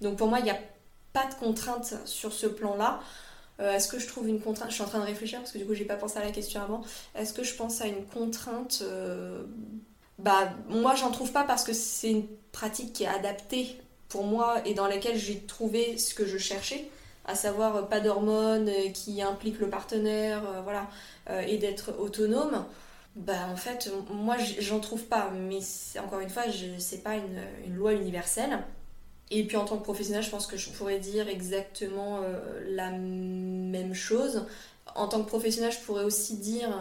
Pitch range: 195-220 Hz